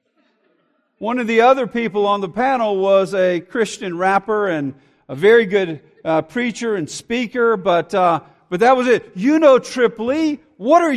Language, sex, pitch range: English, male, 175-255 Hz